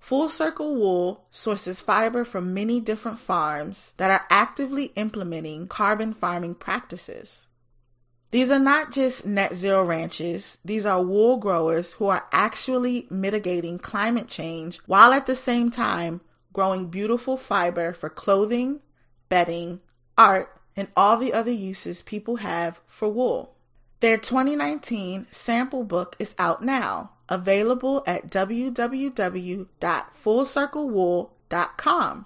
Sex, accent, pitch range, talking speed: female, American, 180-245 Hz, 120 wpm